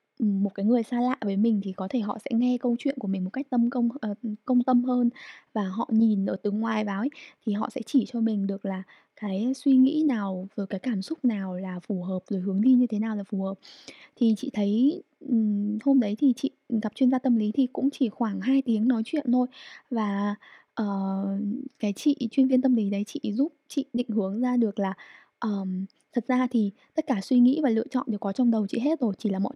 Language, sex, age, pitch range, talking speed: Vietnamese, female, 10-29, 205-255 Hz, 245 wpm